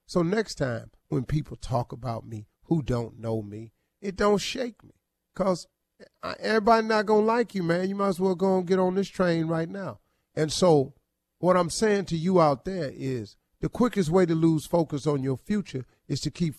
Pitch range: 145-205 Hz